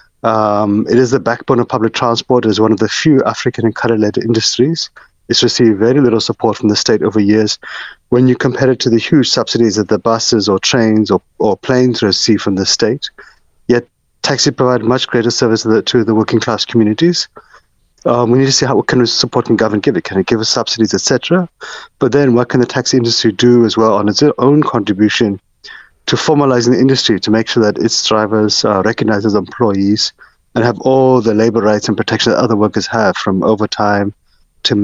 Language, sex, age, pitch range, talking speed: English, male, 30-49, 105-125 Hz, 220 wpm